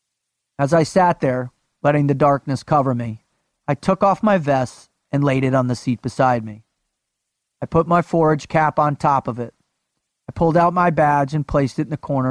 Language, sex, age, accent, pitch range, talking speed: English, male, 40-59, American, 125-155 Hz, 205 wpm